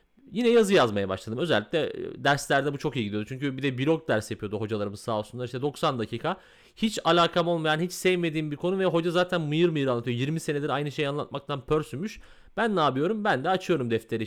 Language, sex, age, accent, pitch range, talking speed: Turkish, male, 30-49, native, 115-160 Hz, 200 wpm